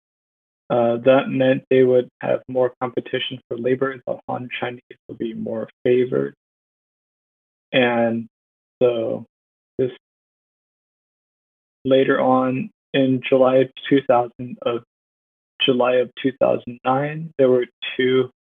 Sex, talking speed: male, 110 wpm